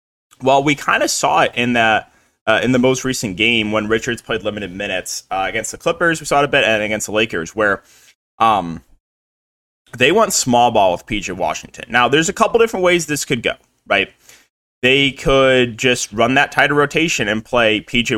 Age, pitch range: 20-39, 105-135 Hz